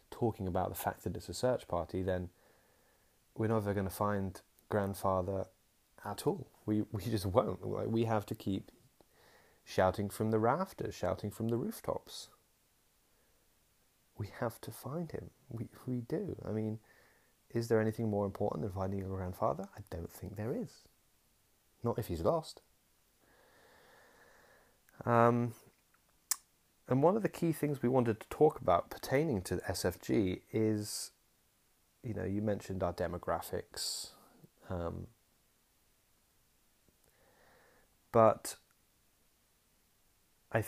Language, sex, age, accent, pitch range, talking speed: English, male, 30-49, British, 95-115 Hz, 130 wpm